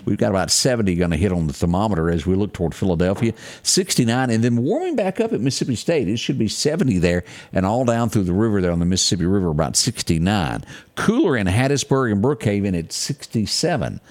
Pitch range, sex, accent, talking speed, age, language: 85-115 Hz, male, American, 210 wpm, 50-69, English